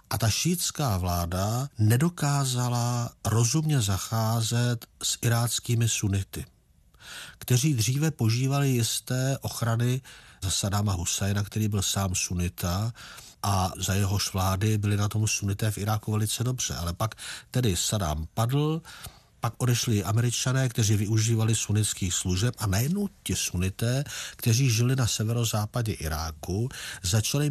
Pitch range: 105-130 Hz